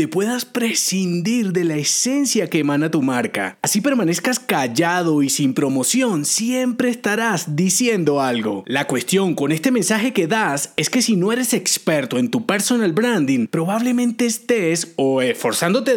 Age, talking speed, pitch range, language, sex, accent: 30-49, 150 wpm, 160-235 Hz, Spanish, male, Colombian